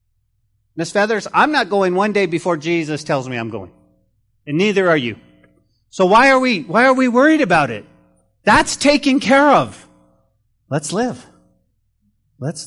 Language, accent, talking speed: English, American, 160 wpm